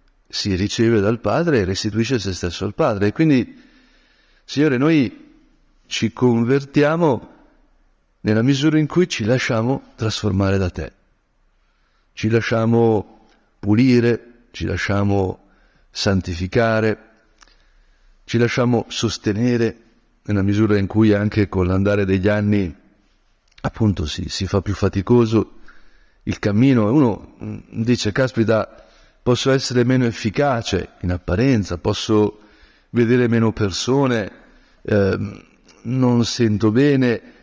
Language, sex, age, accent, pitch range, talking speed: Italian, male, 50-69, native, 100-120 Hz, 110 wpm